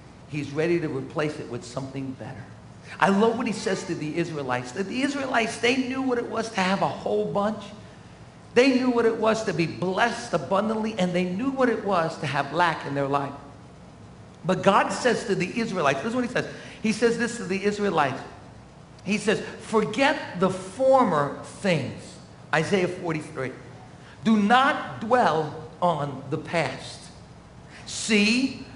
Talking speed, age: 170 wpm, 50-69